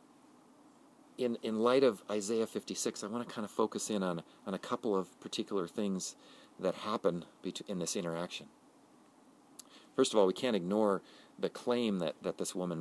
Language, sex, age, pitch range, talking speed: English, male, 40-59, 85-120 Hz, 175 wpm